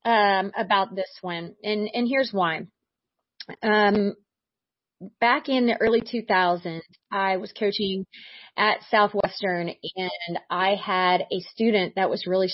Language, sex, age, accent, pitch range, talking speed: English, female, 30-49, American, 180-215 Hz, 130 wpm